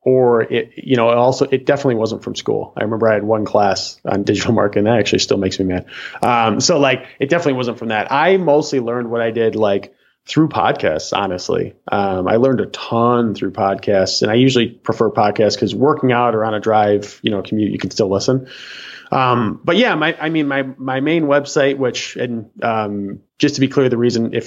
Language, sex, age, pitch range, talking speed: English, male, 30-49, 110-130 Hz, 220 wpm